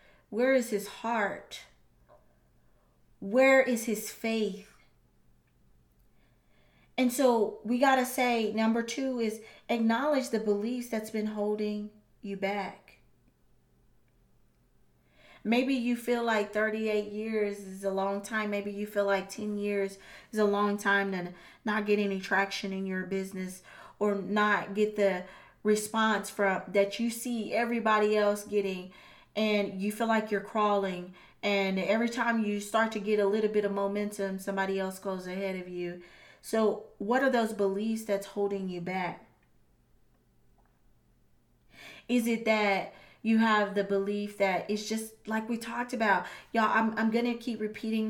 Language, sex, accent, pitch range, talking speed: English, female, American, 195-220 Hz, 145 wpm